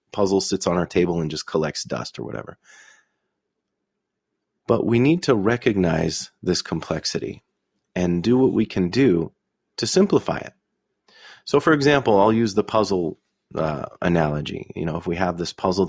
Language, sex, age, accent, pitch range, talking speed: English, male, 30-49, American, 95-120 Hz, 160 wpm